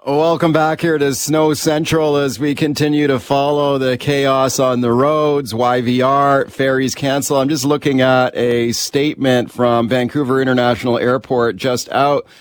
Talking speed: 150 wpm